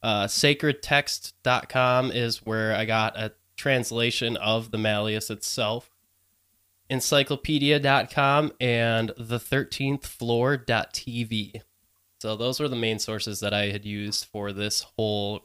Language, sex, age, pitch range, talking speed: English, male, 20-39, 105-130 Hz, 110 wpm